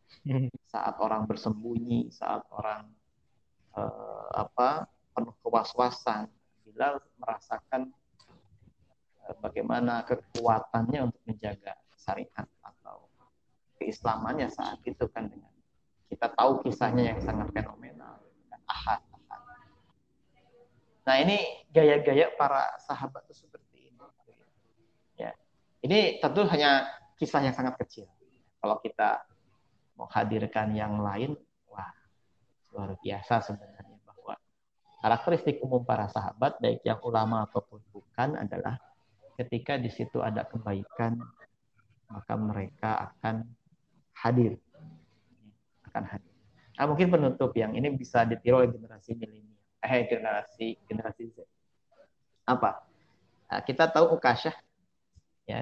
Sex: male